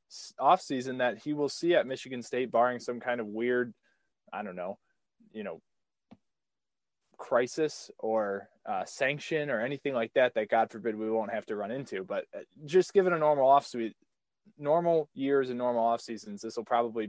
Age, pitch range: 20-39, 115-145 Hz